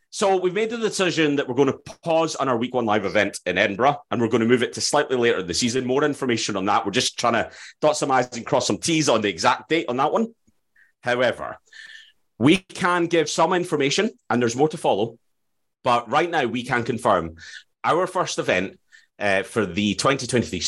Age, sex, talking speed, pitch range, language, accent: 30-49, male, 220 wpm, 120-175 Hz, English, British